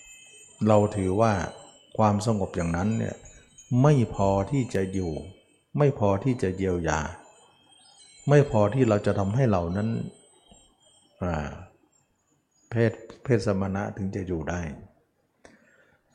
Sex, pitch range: male, 90-120 Hz